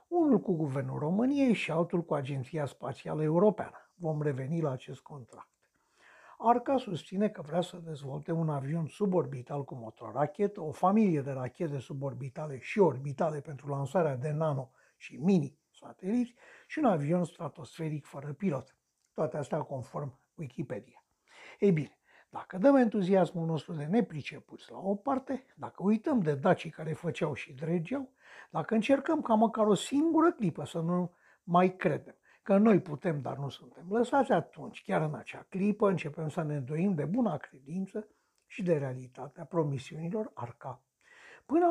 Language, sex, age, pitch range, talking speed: Romanian, male, 60-79, 150-215 Hz, 150 wpm